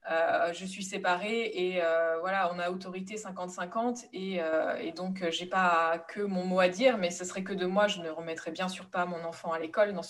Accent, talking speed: French, 230 wpm